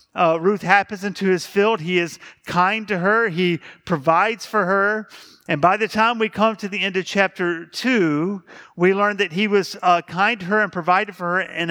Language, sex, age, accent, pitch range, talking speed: English, male, 40-59, American, 170-210 Hz, 210 wpm